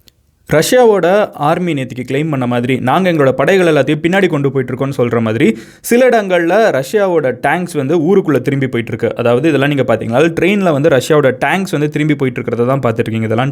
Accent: native